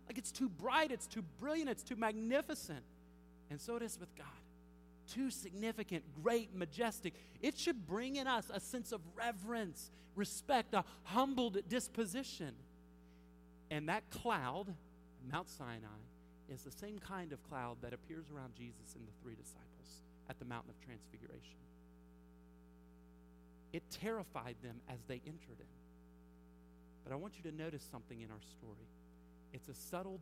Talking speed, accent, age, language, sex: 155 wpm, American, 40-59, English, male